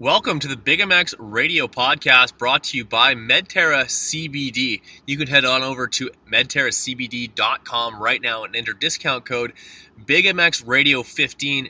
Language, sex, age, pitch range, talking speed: English, male, 20-39, 120-140 Hz, 145 wpm